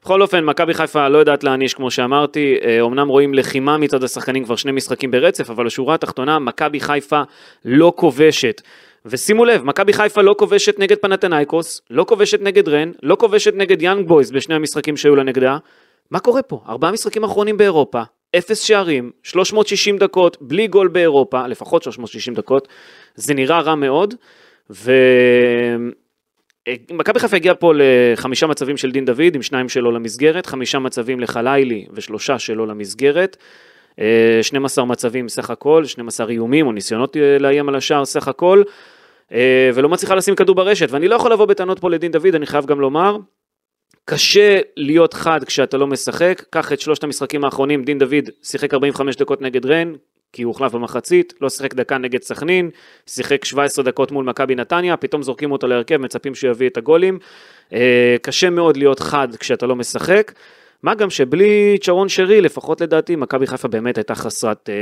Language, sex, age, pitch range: Hebrew, male, 30-49, 130-180 Hz